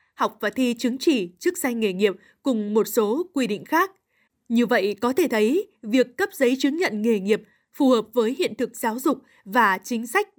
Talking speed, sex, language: 215 wpm, female, Vietnamese